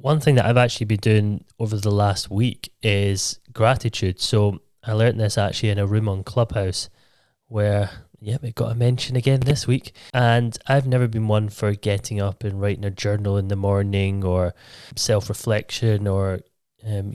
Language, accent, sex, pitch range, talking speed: English, British, male, 105-130 Hz, 180 wpm